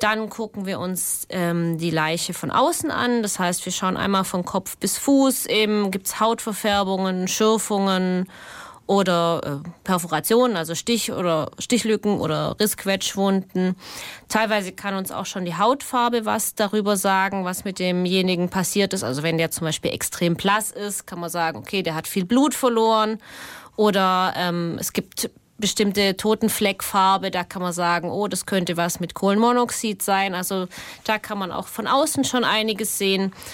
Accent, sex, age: German, female, 20-39